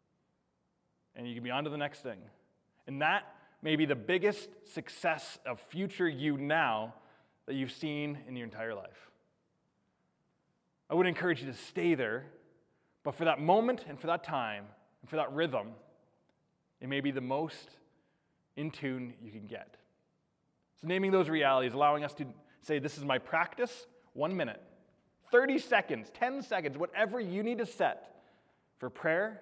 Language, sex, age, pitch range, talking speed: English, male, 20-39, 125-160 Hz, 165 wpm